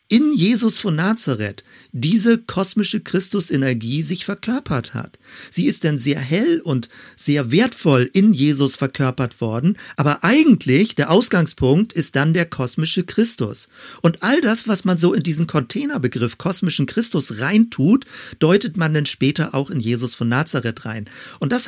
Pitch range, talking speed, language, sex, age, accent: 130-190 Hz, 150 wpm, German, male, 50-69, German